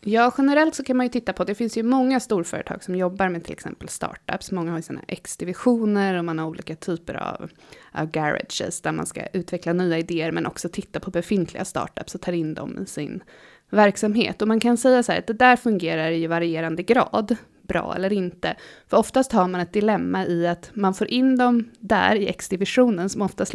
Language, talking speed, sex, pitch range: Swedish, 215 wpm, female, 175-215 Hz